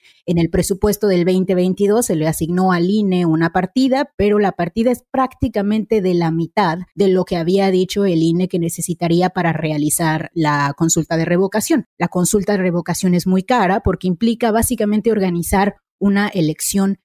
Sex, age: female, 30-49